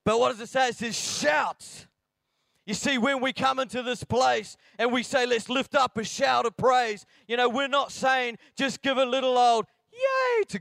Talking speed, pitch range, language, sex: 215 wpm, 195-255 Hz, English, male